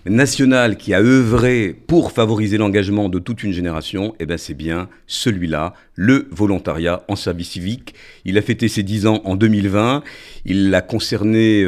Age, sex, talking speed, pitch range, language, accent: 50-69, male, 165 wpm, 90-115 Hz, French, French